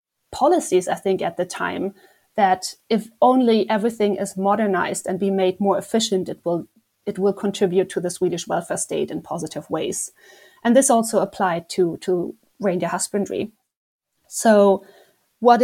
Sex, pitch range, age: female, 190-235 Hz, 30-49